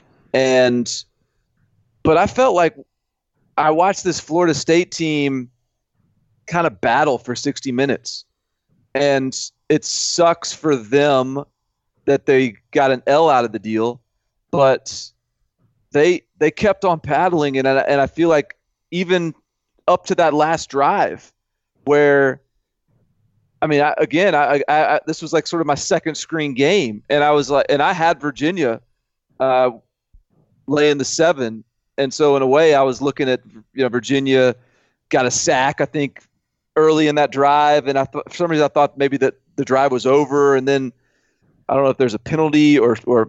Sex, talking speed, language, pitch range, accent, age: male, 170 wpm, English, 130-160 Hz, American, 30-49